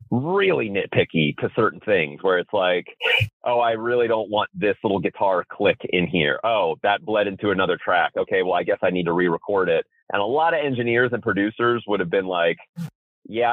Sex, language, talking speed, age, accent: male, English, 205 wpm, 30-49, American